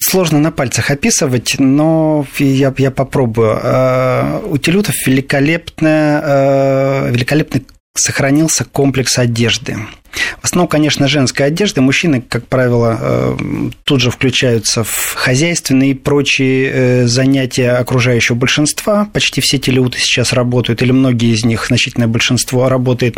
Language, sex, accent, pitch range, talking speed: Russian, male, native, 125-145 Hz, 115 wpm